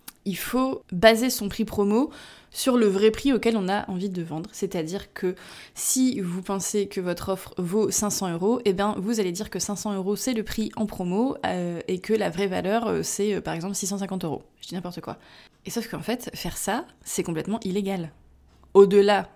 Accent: French